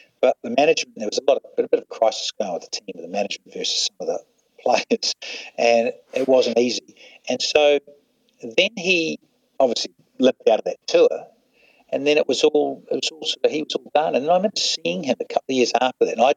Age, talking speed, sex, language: 60-79, 230 wpm, male, English